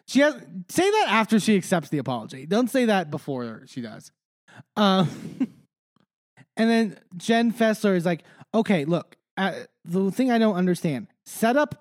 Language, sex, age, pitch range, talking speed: English, male, 20-39, 145-195 Hz, 160 wpm